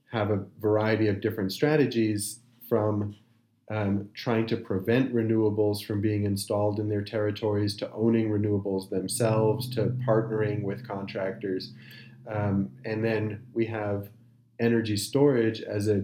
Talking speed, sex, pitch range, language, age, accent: 130 wpm, male, 105-115 Hz, English, 30-49, American